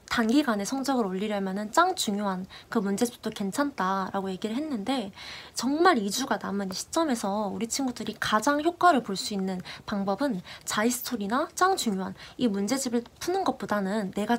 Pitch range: 205-260 Hz